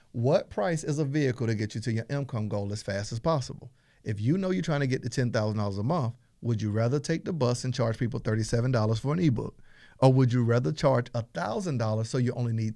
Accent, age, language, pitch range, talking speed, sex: American, 50-69, English, 120-160 Hz, 235 wpm, male